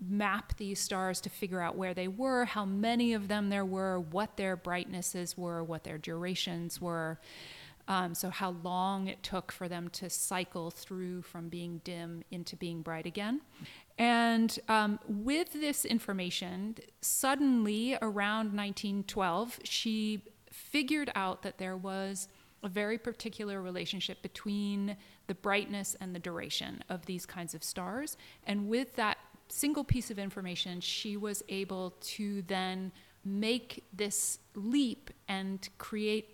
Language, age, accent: English, 30-49, American